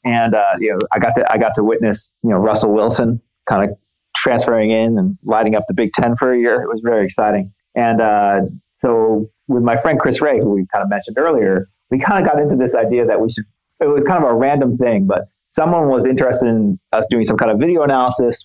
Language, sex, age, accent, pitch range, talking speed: English, male, 30-49, American, 105-130 Hz, 245 wpm